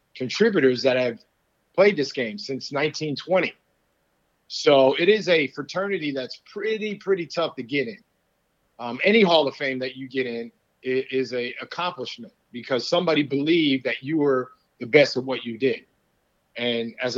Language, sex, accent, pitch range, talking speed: English, male, American, 125-150 Hz, 160 wpm